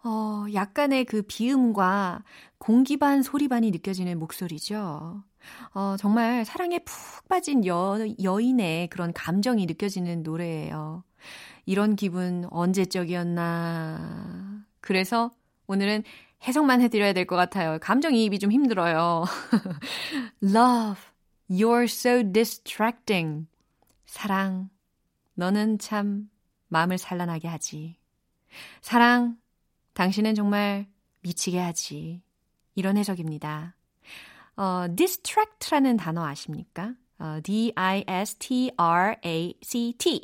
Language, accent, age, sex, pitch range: Korean, native, 30-49, female, 175-235 Hz